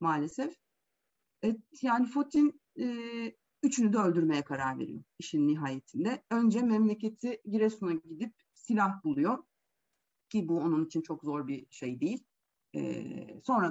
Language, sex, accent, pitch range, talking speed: Turkish, female, native, 175-240 Hz, 125 wpm